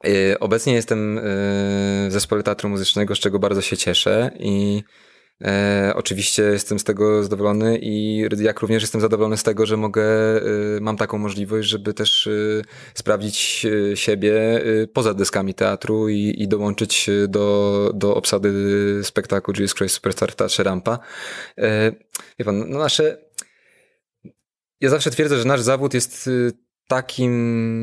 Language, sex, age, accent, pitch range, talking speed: Polish, male, 20-39, native, 105-120 Hz, 125 wpm